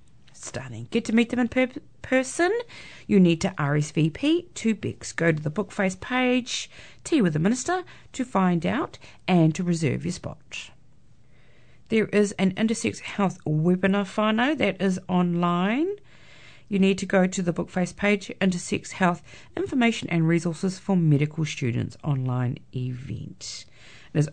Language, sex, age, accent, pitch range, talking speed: English, female, 40-59, Australian, 150-205 Hz, 150 wpm